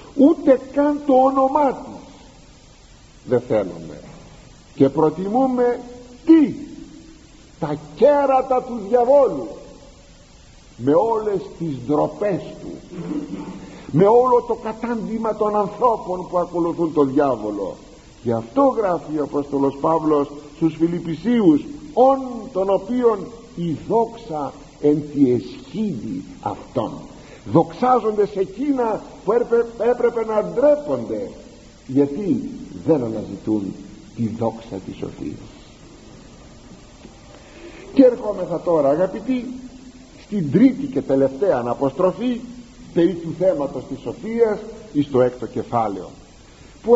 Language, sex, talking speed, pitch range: Greek, male, 100 wpm, 155-255 Hz